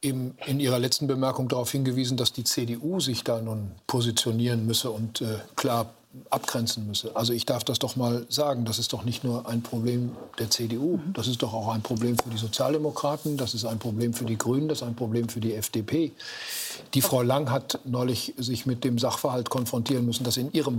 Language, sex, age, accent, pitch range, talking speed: German, male, 50-69, German, 115-145 Hz, 210 wpm